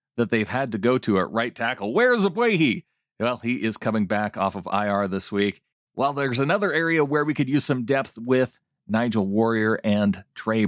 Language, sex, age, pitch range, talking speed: English, male, 40-59, 110-140 Hz, 200 wpm